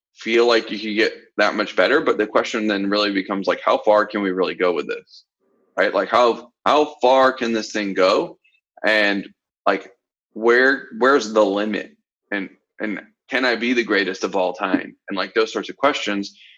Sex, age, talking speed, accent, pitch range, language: male, 20-39, 195 wpm, American, 100-130 Hz, English